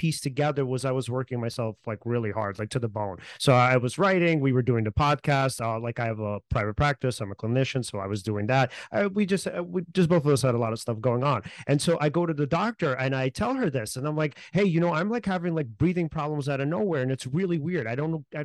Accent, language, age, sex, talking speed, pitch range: American, English, 30-49, male, 285 wpm, 130-180 Hz